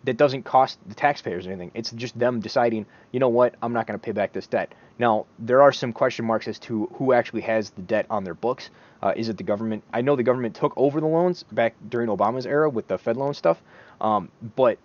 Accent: American